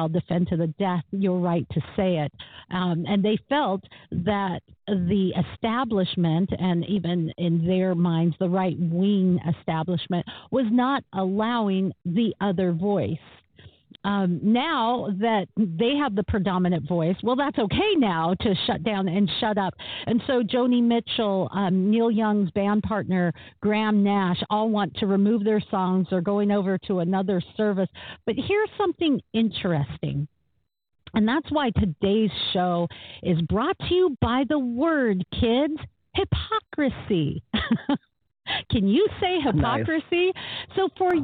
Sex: female